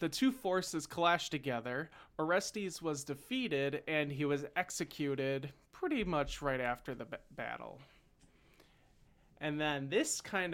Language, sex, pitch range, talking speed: English, male, 135-165 Hz, 130 wpm